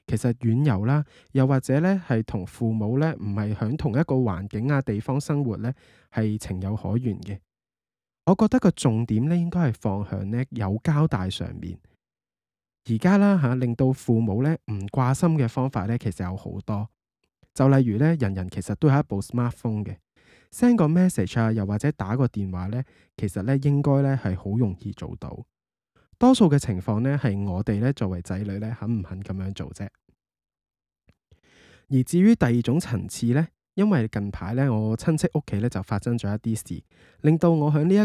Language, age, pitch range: Chinese, 20-39, 105-145 Hz